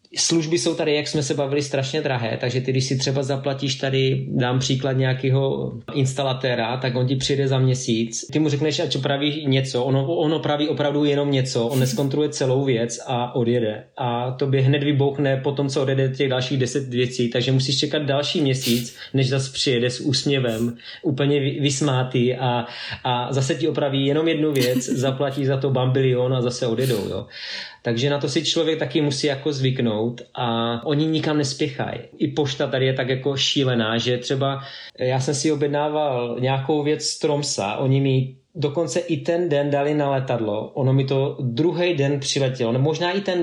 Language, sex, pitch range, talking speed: Slovak, male, 130-150 Hz, 180 wpm